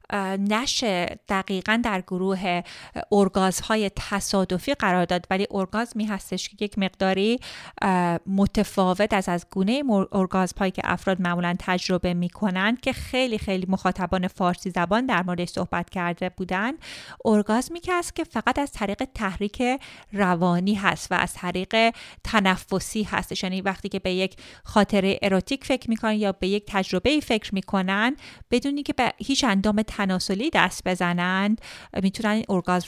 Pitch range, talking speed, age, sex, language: 185-230 Hz, 145 wpm, 30-49, female, Persian